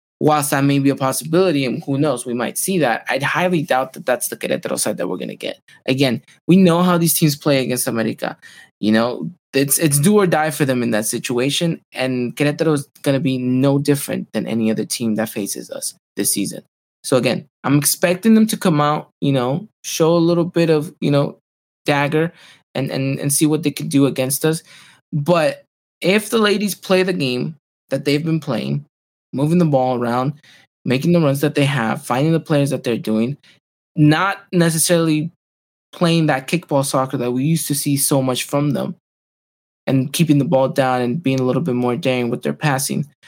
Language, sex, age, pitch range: English, male, 20-39, 125-160 Hz